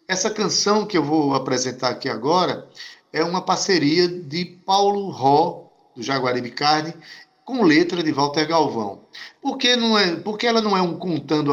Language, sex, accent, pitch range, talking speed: Portuguese, male, Brazilian, 145-190 Hz, 155 wpm